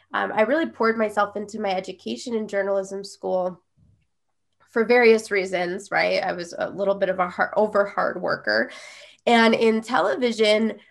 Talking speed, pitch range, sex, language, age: 160 wpm, 205-250 Hz, female, English, 20-39